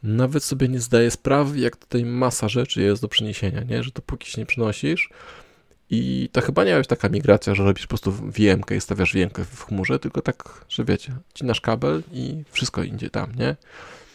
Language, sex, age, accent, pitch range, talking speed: Polish, male, 20-39, native, 100-135 Hz, 195 wpm